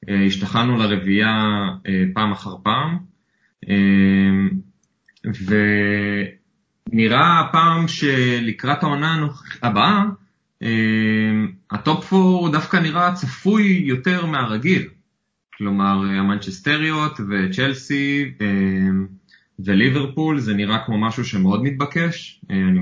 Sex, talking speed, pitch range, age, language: male, 75 wpm, 95-145 Hz, 20-39, Hebrew